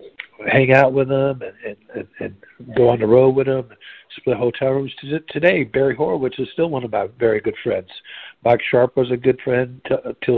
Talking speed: 200 wpm